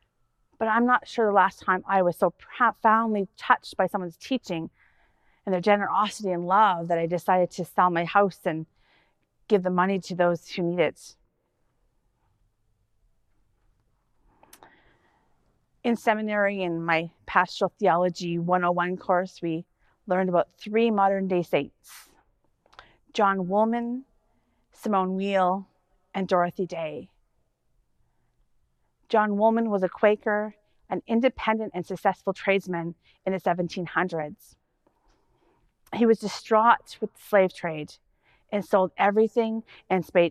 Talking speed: 120 wpm